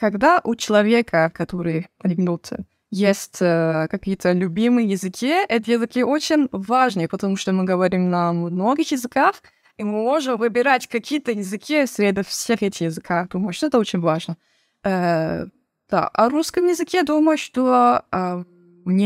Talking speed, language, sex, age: 140 wpm, English, female, 20-39